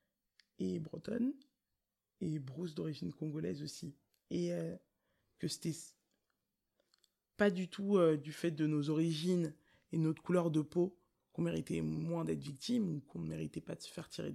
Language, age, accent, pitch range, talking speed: French, 20-39, French, 155-185 Hz, 165 wpm